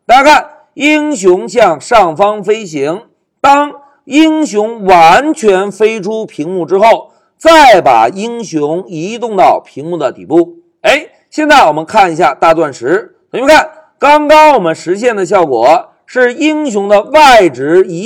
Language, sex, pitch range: Chinese, male, 205-310 Hz